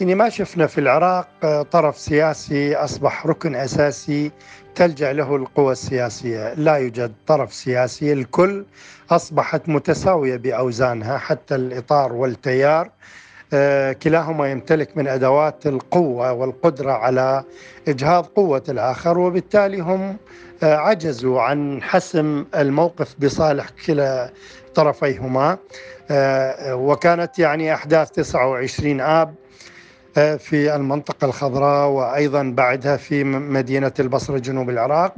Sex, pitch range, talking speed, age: male, 135-170 Hz, 100 wpm, 50-69